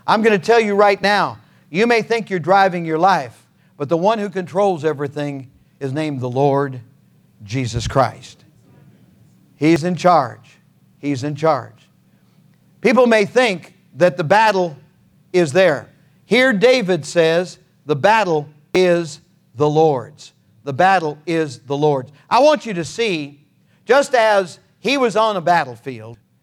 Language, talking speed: English, 150 wpm